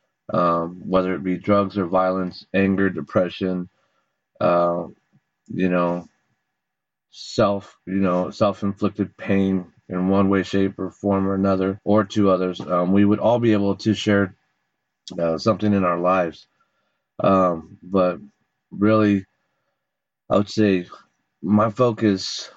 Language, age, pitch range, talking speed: English, 30-49, 95-105 Hz, 135 wpm